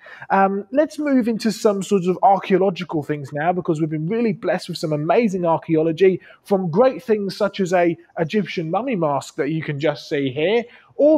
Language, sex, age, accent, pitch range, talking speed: English, male, 30-49, British, 165-210 Hz, 190 wpm